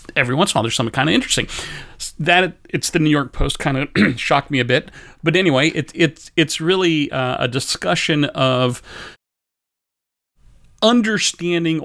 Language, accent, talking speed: English, American, 165 wpm